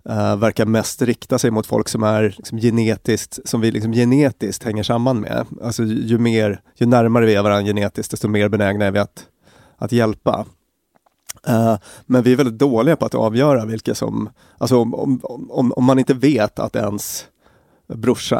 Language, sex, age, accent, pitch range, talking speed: English, male, 30-49, Swedish, 105-125 Hz, 165 wpm